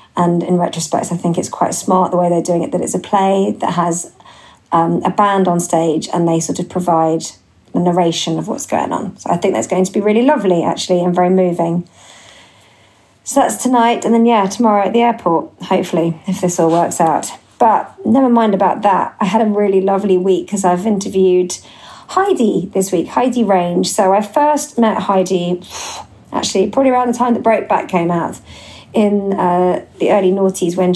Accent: British